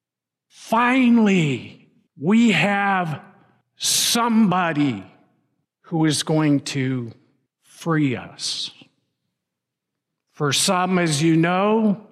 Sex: male